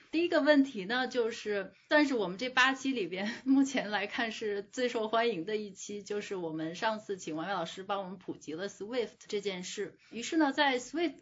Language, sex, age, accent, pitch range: Chinese, female, 10-29, native, 200-250 Hz